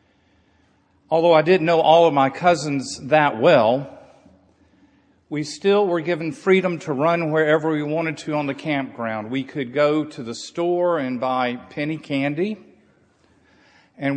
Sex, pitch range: male, 130-160 Hz